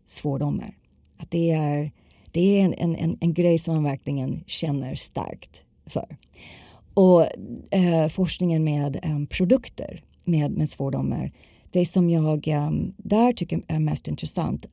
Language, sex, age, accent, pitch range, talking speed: Swedish, female, 30-49, native, 150-195 Hz, 140 wpm